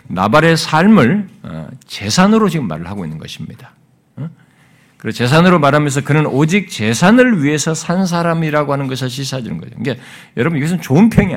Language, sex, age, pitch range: Korean, male, 50-69, 130-215 Hz